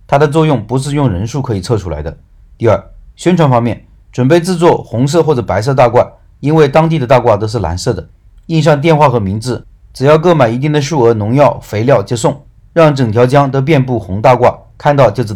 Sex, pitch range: male, 105-150 Hz